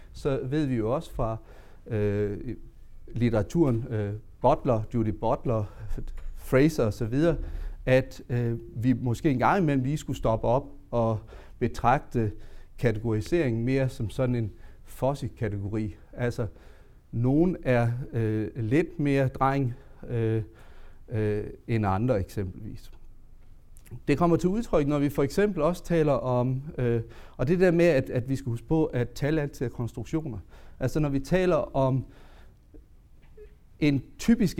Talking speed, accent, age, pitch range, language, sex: 140 wpm, Danish, 40-59, 110-140 Hz, English, male